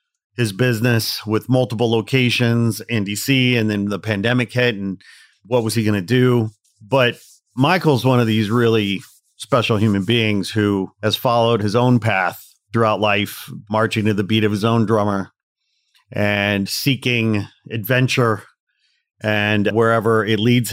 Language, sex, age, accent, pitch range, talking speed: English, male, 40-59, American, 105-115 Hz, 150 wpm